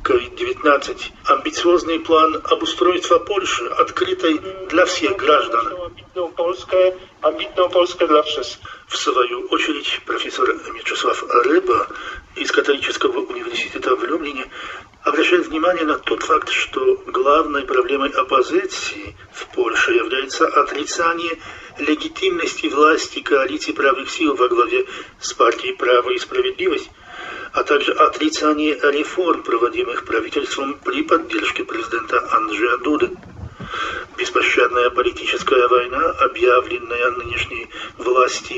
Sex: male